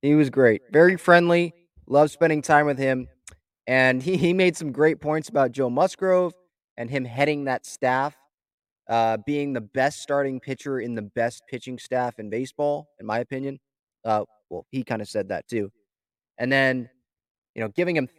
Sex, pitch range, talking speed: male, 130-160 Hz, 180 wpm